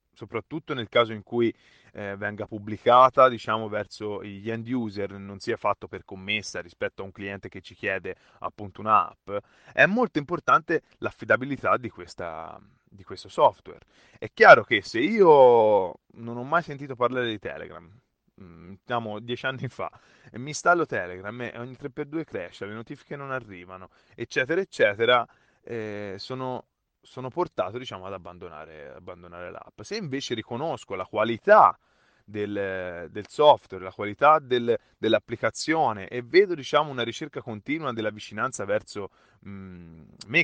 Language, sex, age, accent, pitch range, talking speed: Italian, male, 20-39, native, 100-135 Hz, 140 wpm